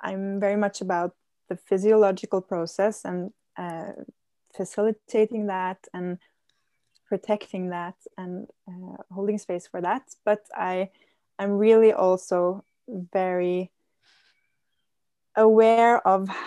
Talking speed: 100 wpm